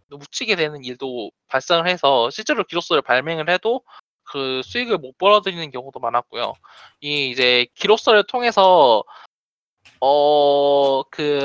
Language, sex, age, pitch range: Korean, male, 20-39, 150-225 Hz